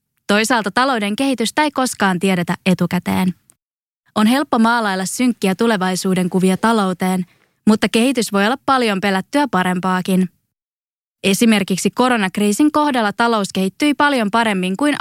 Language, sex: English, female